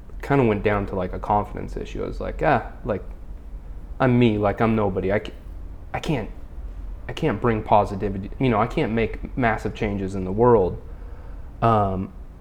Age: 20-39